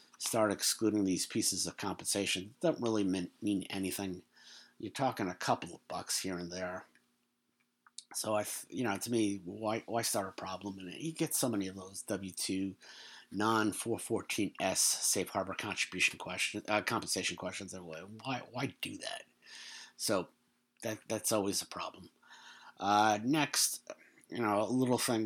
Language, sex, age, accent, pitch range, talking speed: English, male, 50-69, American, 95-110 Hz, 160 wpm